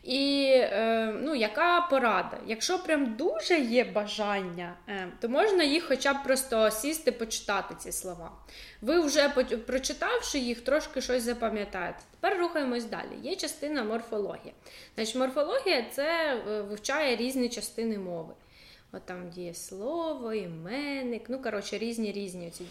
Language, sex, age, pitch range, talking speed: Ukrainian, female, 20-39, 210-265 Hz, 125 wpm